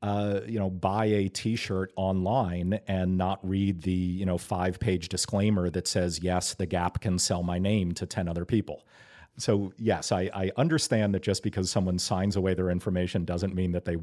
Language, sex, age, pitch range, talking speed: English, male, 40-59, 90-105 Hz, 195 wpm